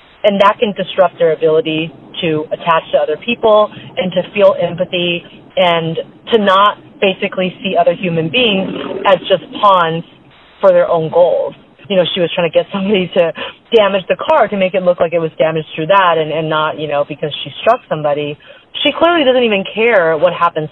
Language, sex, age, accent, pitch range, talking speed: English, female, 30-49, American, 165-215 Hz, 195 wpm